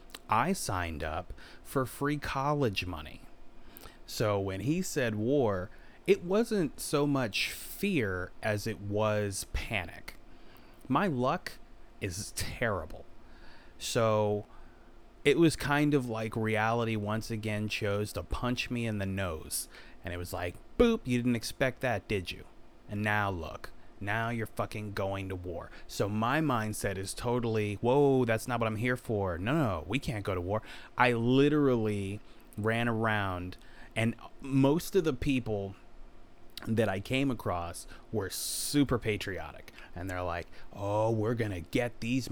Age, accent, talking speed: 30-49, American, 150 wpm